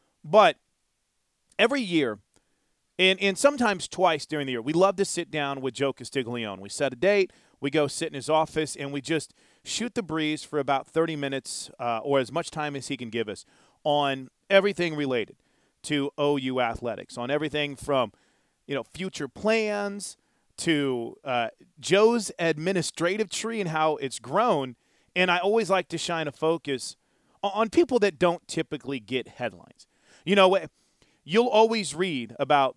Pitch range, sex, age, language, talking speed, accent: 130-175 Hz, male, 30-49, English, 165 wpm, American